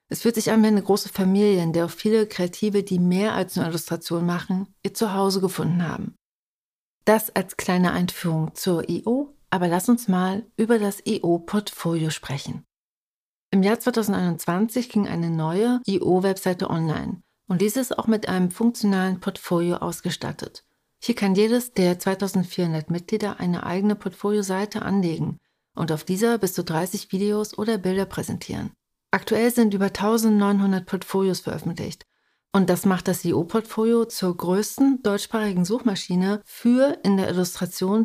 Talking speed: 150 wpm